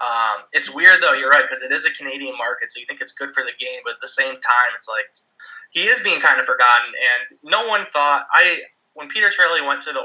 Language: English